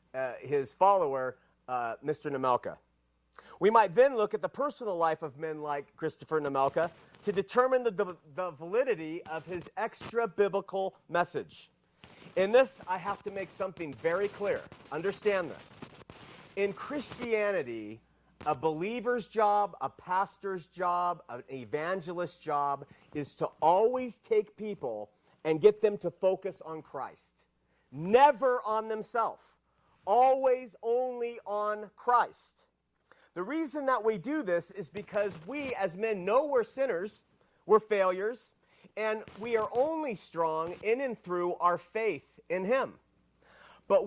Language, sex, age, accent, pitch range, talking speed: English, male, 40-59, American, 165-240 Hz, 135 wpm